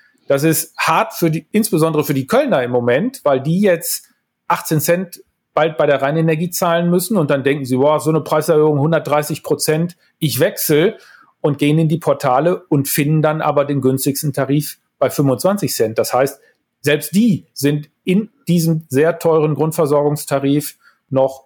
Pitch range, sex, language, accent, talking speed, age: 145-175 Hz, male, German, German, 170 wpm, 40-59